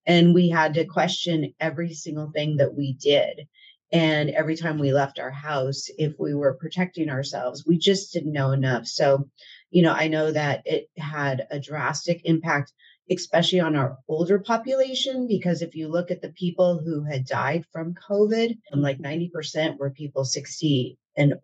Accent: American